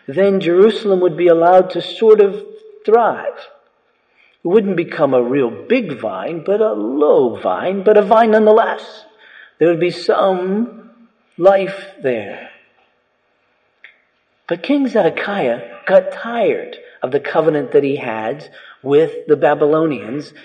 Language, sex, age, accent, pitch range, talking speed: English, male, 50-69, American, 130-200 Hz, 130 wpm